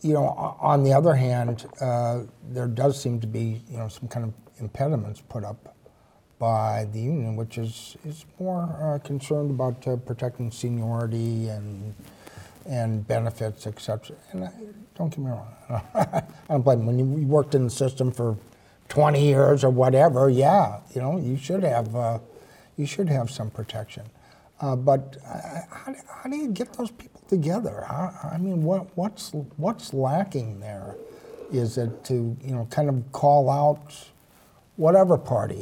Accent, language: American, English